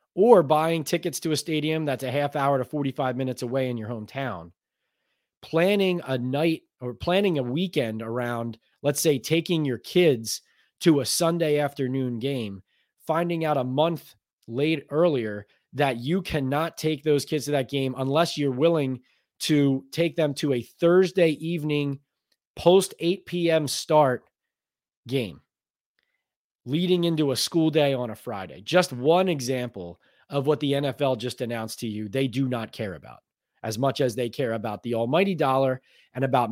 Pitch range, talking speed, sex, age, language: 125-155 Hz, 165 wpm, male, 20-39, English